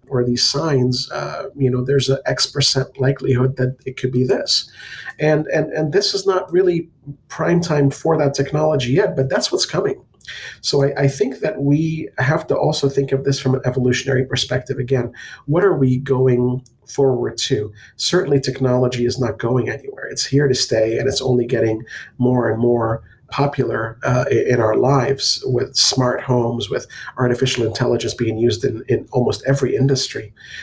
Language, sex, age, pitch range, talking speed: English, male, 40-59, 125-140 Hz, 180 wpm